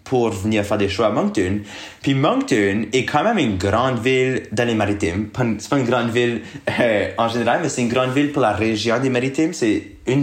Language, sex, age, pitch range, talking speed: French, male, 20-39, 105-130 Hz, 225 wpm